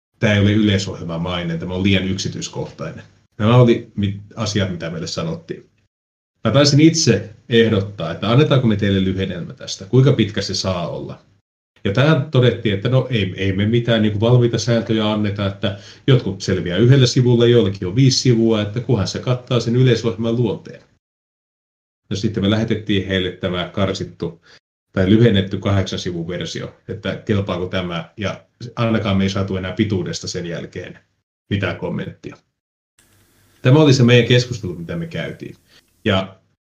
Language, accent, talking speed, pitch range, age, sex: Finnish, native, 150 wpm, 95-120 Hz, 30-49, male